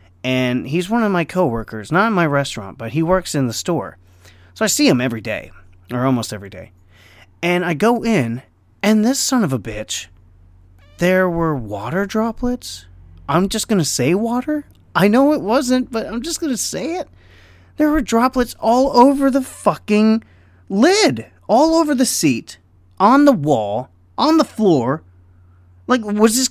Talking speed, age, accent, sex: 170 wpm, 30-49, American, male